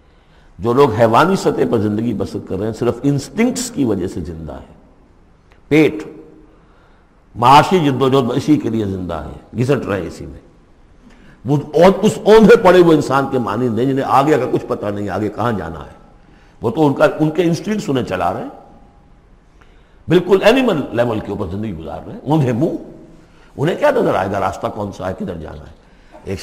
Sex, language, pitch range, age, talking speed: male, Urdu, 100-150 Hz, 60-79, 190 wpm